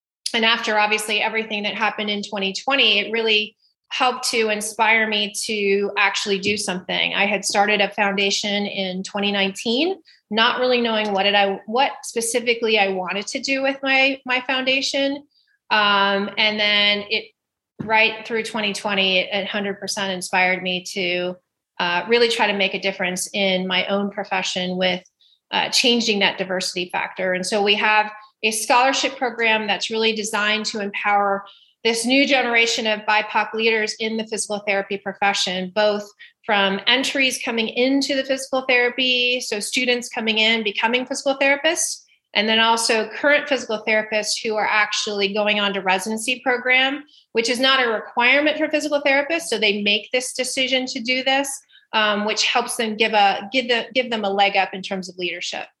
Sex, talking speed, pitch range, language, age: female, 165 wpm, 200-250 Hz, English, 30-49